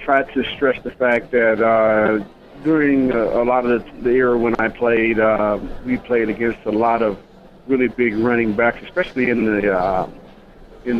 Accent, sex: American, male